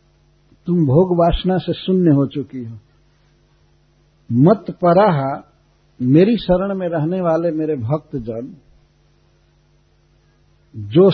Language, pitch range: Hindi, 135-180 Hz